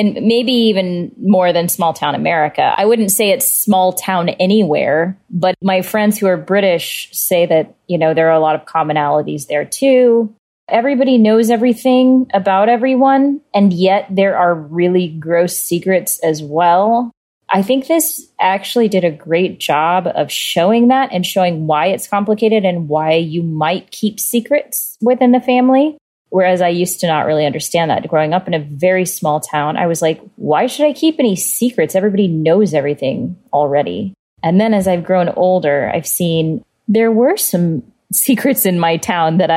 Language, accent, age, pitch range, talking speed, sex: English, American, 20-39, 165-220 Hz, 175 wpm, female